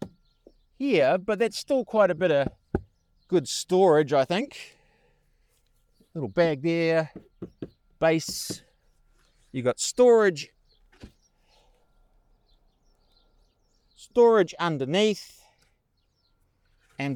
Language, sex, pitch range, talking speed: English, male, 125-195 Hz, 75 wpm